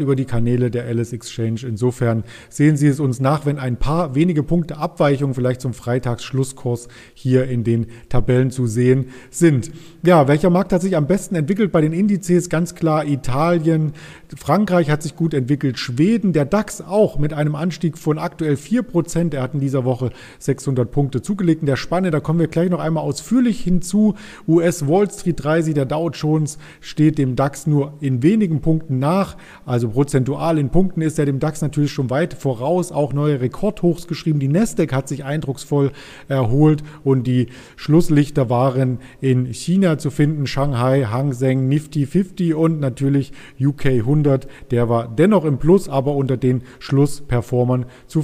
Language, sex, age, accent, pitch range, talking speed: German, male, 40-59, German, 130-165 Hz, 175 wpm